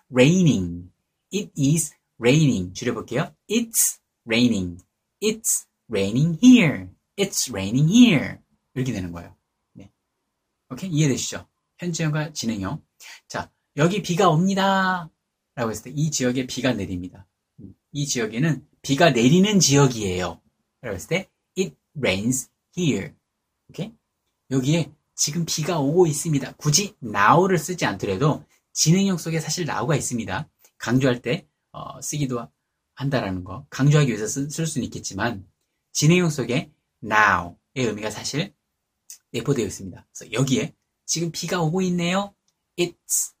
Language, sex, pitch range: Korean, male, 110-170 Hz